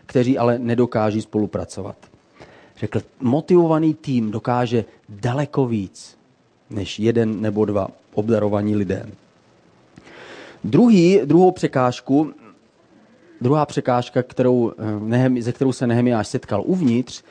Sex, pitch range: male, 110-135 Hz